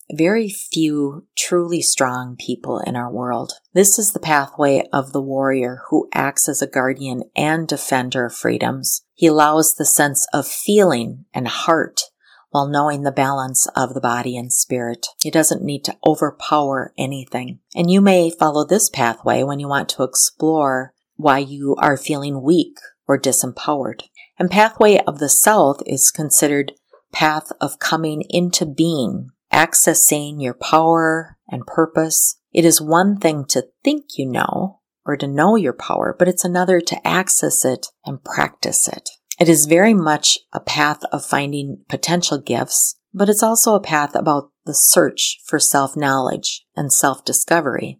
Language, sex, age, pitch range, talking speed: English, female, 40-59, 135-170 Hz, 160 wpm